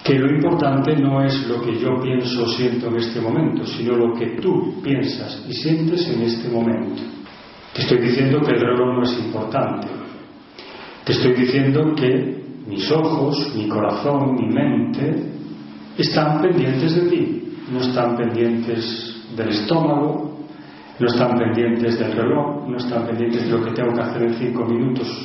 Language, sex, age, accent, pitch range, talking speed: Spanish, male, 40-59, Spanish, 120-155 Hz, 165 wpm